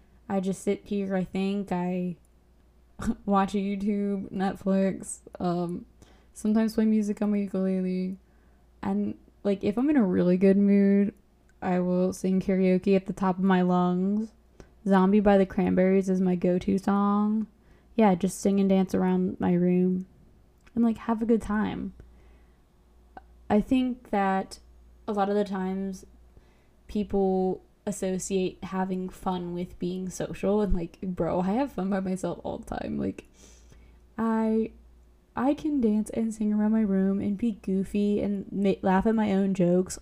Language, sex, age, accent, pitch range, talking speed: English, female, 10-29, American, 180-205 Hz, 155 wpm